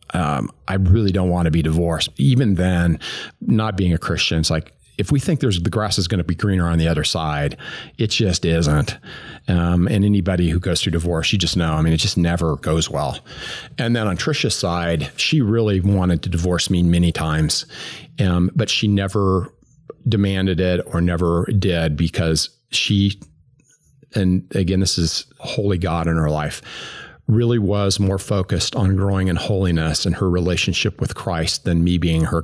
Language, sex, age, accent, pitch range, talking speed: English, male, 40-59, American, 85-100 Hz, 185 wpm